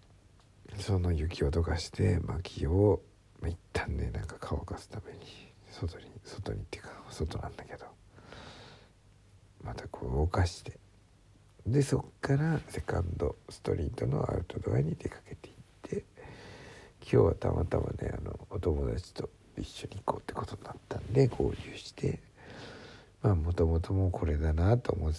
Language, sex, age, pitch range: Japanese, male, 60-79, 90-110 Hz